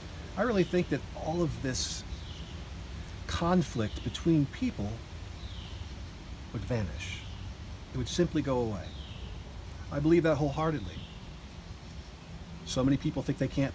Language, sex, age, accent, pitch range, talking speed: English, male, 40-59, American, 85-140 Hz, 120 wpm